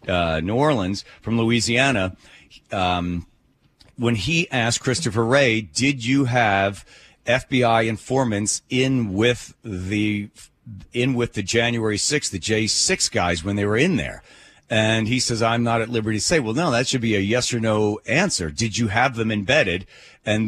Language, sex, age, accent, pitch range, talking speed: English, male, 40-59, American, 95-125 Hz, 170 wpm